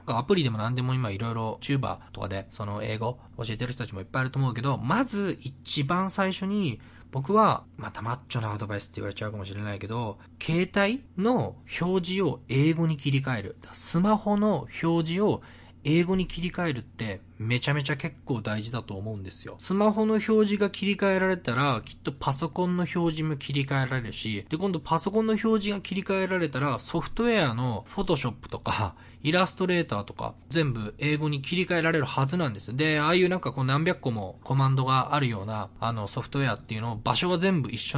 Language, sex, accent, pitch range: Japanese, male, native, 115-175 Hz